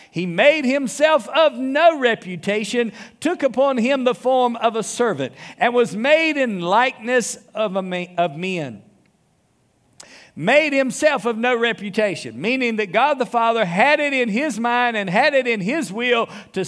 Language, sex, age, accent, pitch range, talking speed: English, male, 50-69, American, 205-280 Hz, 165 wpm